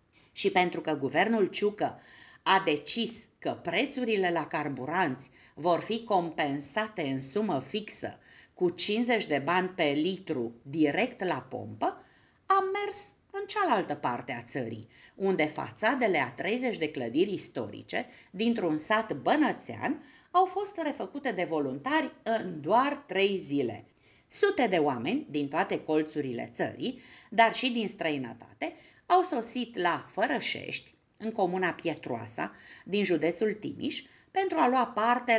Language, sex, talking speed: Romanian, female, 130 wpm